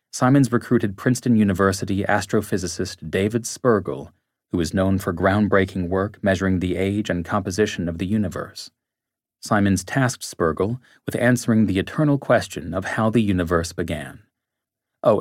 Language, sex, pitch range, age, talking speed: English, male, 90-110 Hz, 30-49, 140 wpm